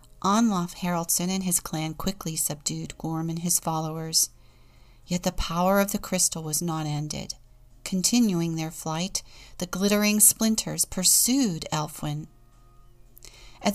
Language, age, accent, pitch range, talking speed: English, 40-59, American, 160-210 Hz, 125 wpm